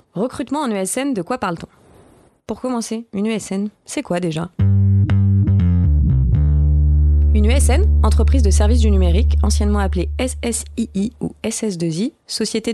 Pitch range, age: 170-230 Hz, 20-39